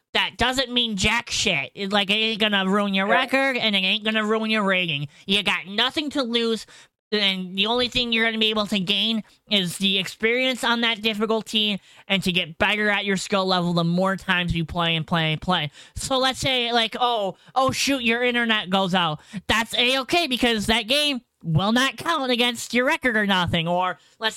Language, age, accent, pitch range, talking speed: English, 20-39, American, 195-245 Hz, 215 wpm